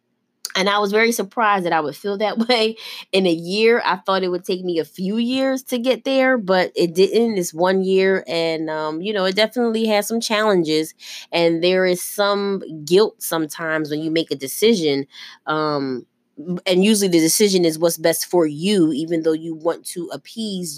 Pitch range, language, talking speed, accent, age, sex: 155-190 Hz, English, 195 wpm, American, 20-39, female